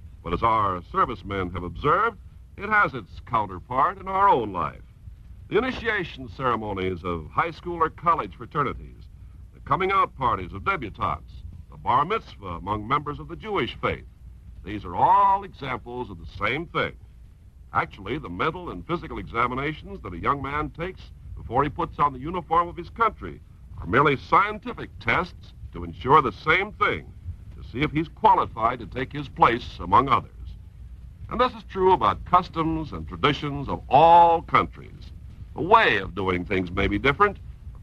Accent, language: American, English